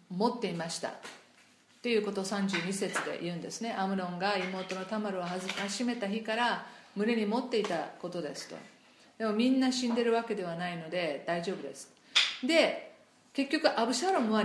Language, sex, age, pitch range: Japanese, female, 50-69, 185-235 Hz